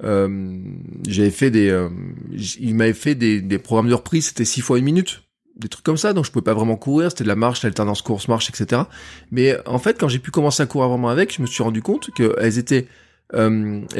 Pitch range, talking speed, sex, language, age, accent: 110-135 Hz, 235 wpm, male, French, 20-39, French